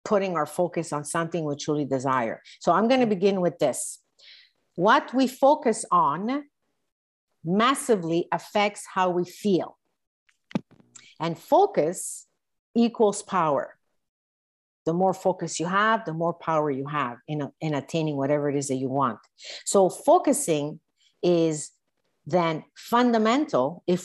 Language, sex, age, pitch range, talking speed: English, female, 50-69, 155-220 Hz, 130 wpm